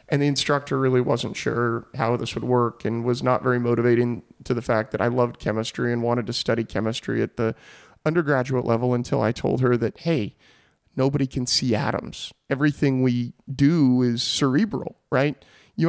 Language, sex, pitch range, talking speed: English, male, 125-165 Hz, 180 wpm